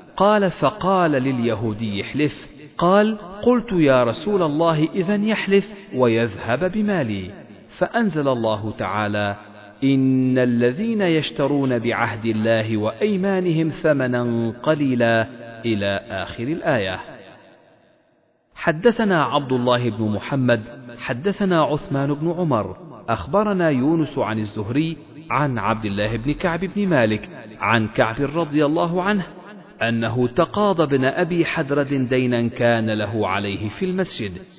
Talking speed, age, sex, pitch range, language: 110 wpm, 40-59, male, 115-175 Hz, Arabic